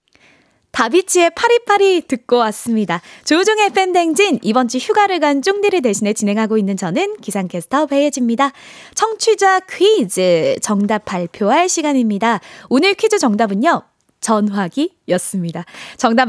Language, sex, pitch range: Korean, female, 215-335 Hz